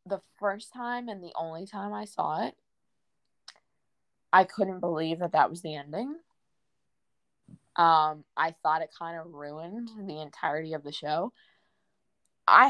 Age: 20-39